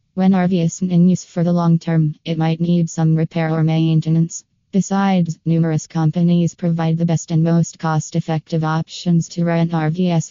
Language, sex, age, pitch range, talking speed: English, female, 20-39, 165-175 Hz, 170 wpm